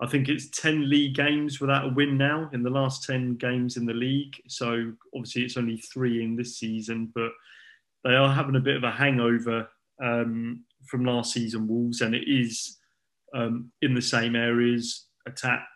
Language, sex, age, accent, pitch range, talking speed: English, male, 20-39, British, 115-130 Hz, 185 wpm